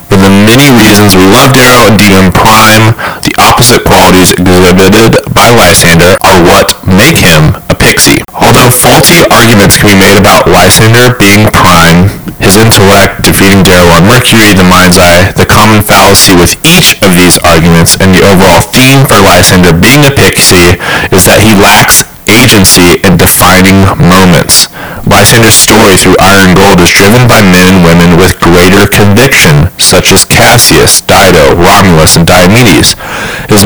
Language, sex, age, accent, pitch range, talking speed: English, male, 30-49, American, 90-105 Hz, 155 wpm